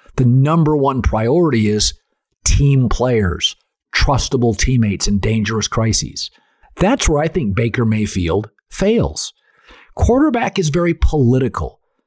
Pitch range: 110-160 Hz